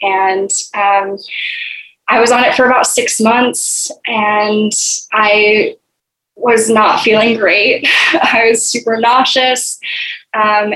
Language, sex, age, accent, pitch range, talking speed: English, female, 10-29, American, 205-235 Hz, 115 wpm